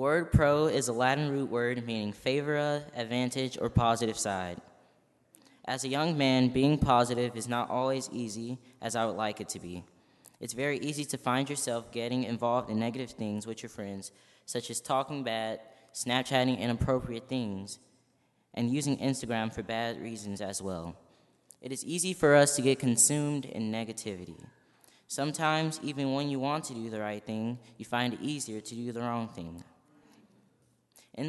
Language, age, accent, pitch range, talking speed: English, 20-39, American, 115-140 Hz, 170 wpm